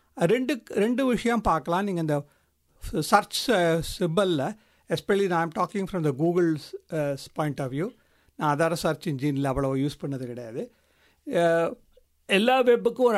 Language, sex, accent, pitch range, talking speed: English, male, Indian, 170-235 Hz, 110 wpm